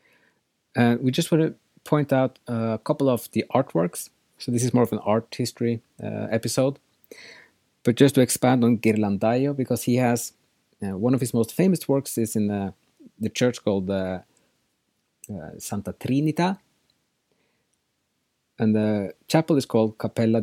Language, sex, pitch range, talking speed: English, male, 105-130 Hz, 160 wpm